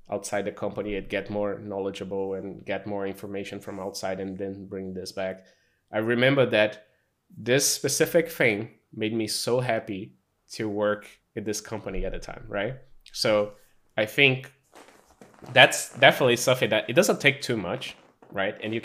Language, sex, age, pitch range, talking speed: English, male, 20-39, 100-120 Hz, 165 wpm